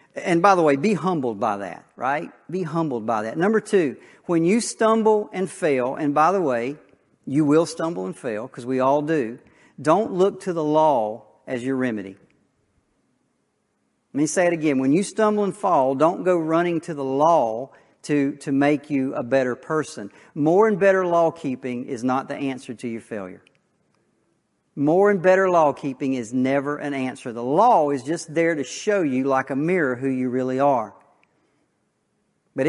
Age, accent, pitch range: 50-69, American, 135-180 Hz